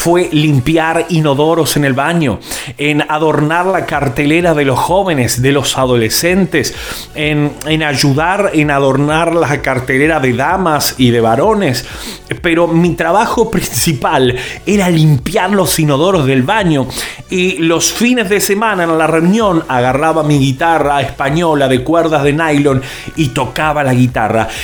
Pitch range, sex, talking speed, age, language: 135-170 Hz, male, 140 wpm, 30-49, Spanish